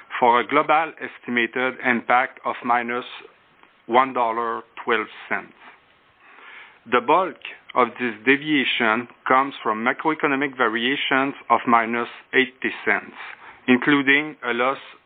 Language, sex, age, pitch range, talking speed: English, male, 40-59, 120-140 Hz, 95 wpm